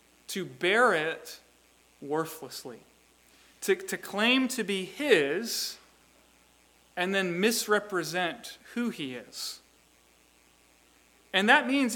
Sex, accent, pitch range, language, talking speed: male, American, 175-240 Hz, English, 95 wpm